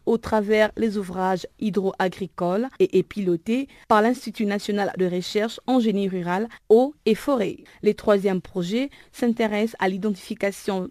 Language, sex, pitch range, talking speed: French, female, 195-235 Hz, 140 wpm